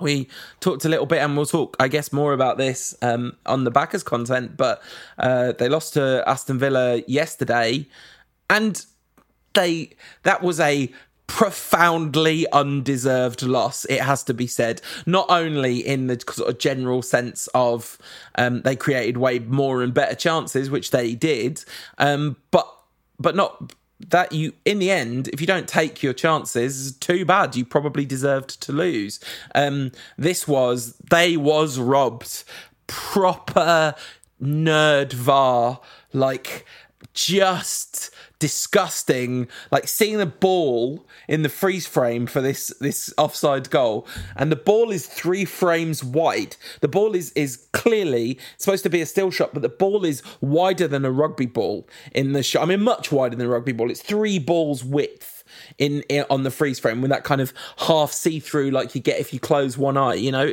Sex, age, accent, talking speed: male, 20-39, British, 170 wpm